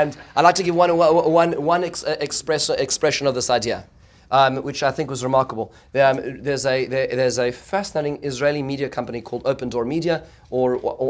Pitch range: 125-150 Hz